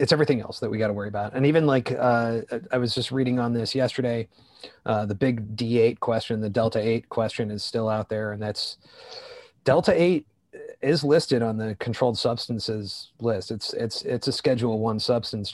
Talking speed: 200 wpm